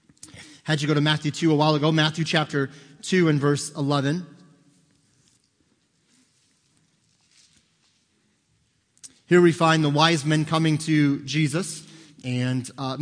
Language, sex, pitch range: English, male, 140-160 Hz